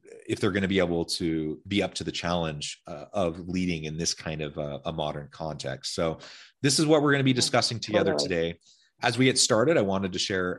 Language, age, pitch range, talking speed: English, 30-49, 85-115 Hz, 240 wpm